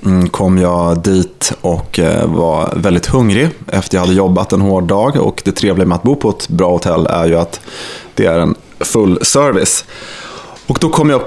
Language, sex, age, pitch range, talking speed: Swedish, male, 30-49, 95-115 Hz, 200 wpm